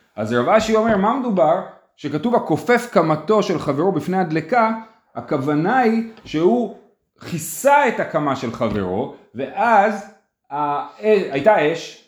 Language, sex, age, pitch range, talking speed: Hebrew, male, 30-49, 135-210 Hz, 130 wpm